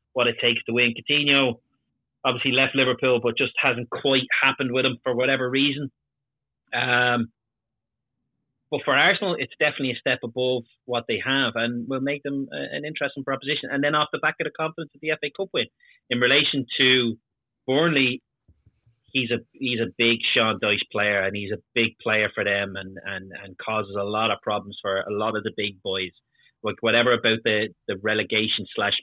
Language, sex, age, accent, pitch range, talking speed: English, male, 30-49, Irish, 110-135 Hz, 190 wpm